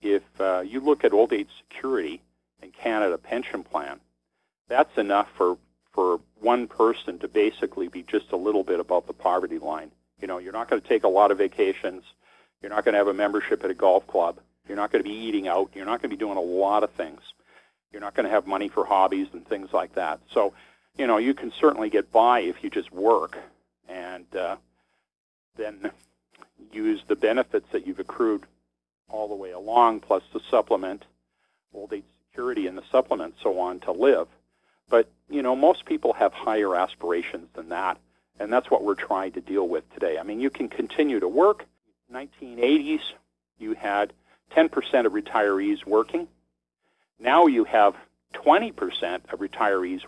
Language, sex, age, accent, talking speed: English, male, 50-69, American, 190 wpm